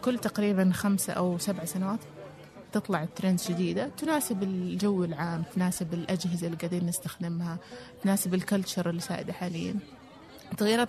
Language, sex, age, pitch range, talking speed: Arabic, female, 30-49, 175-200 Hz, 125 wpm